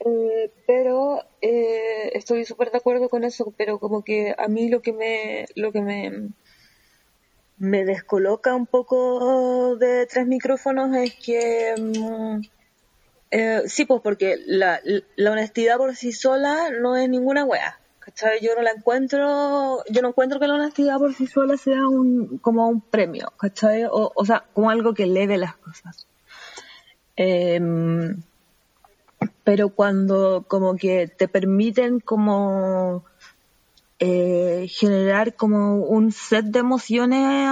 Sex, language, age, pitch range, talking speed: female, Spanish, 20-39, 200-250 Hz, 140 wpm